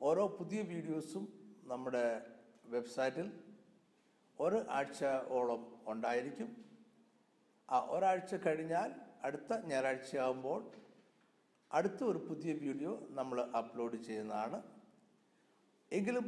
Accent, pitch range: native, 125-195 Hz